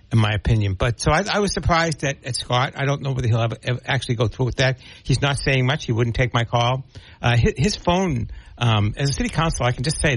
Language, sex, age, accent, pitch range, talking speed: English, male, 60-79, American, 110-130 Hz, 270 wpm